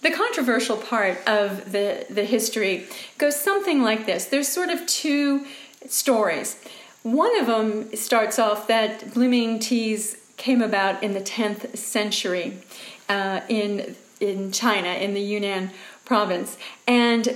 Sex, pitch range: female, 205-250 Hz